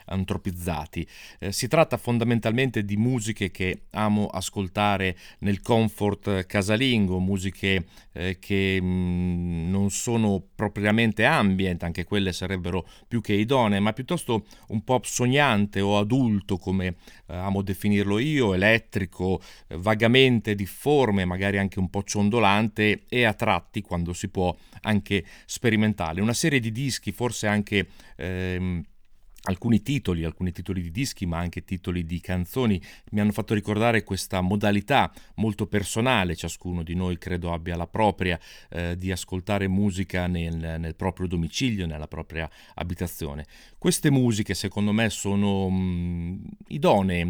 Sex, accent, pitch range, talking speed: male, native, 90-110 Hz, 135 wpm